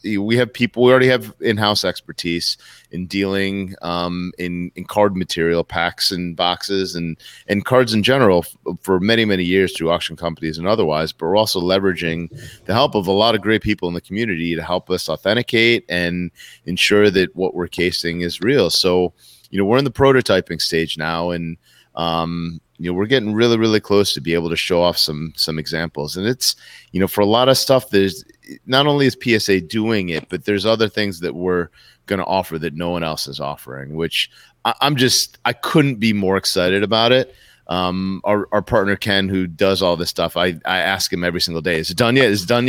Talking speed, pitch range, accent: 215 wpm, 85-110 Hz, American